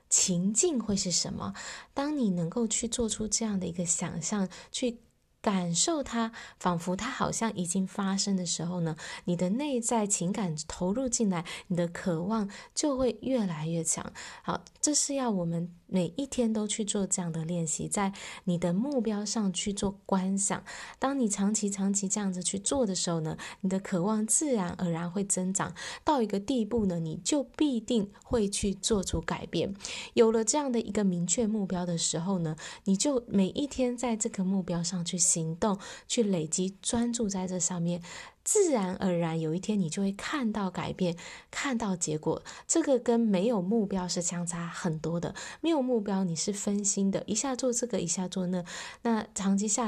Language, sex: Chinese, female